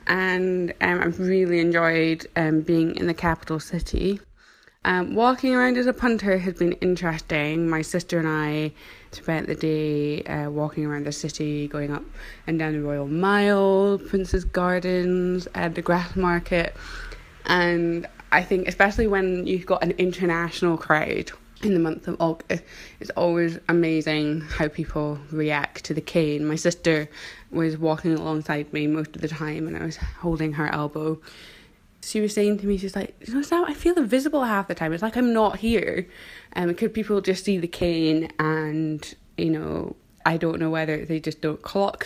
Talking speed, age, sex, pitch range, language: 175 wpm, 20-39, female, 155-185 Hz, English